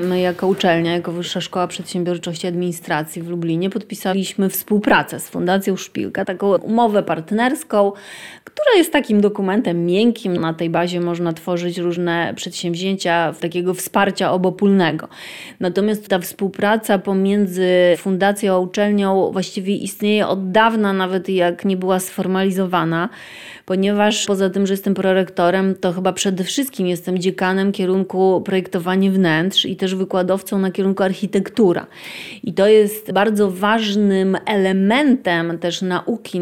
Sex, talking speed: female, 130 wpm